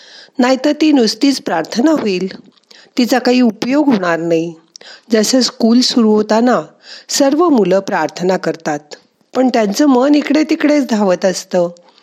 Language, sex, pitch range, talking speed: Marathi, female, 185-260 Hz, 125 wpm